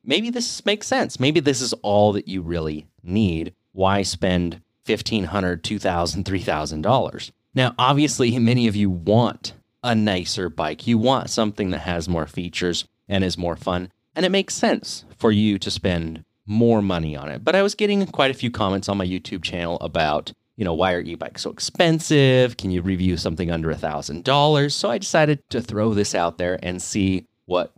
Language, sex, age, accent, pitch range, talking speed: English, male, 30-49, American, 95-125 Hz, 185 wpm